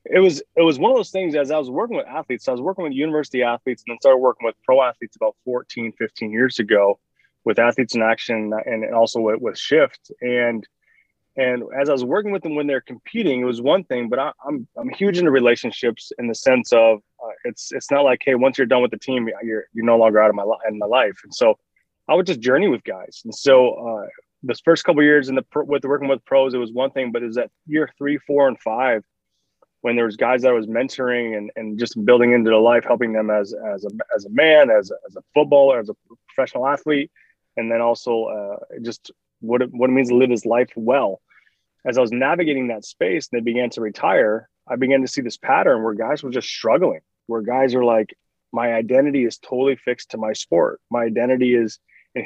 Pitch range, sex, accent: 115-140 Hz, male, American